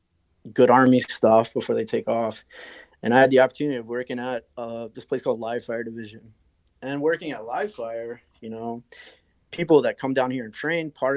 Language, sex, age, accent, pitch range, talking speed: English, male, 20-39, American, 110-135 Hz, 200 wpm